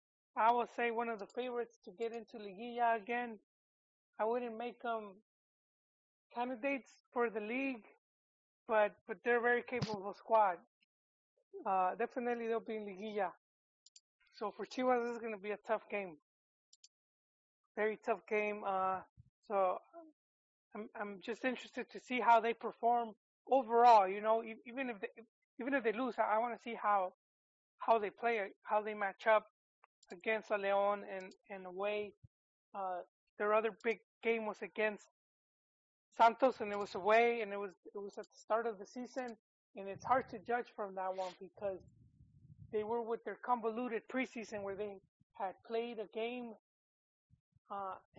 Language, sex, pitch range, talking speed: English, male, 205-235 Hz, 165 wpm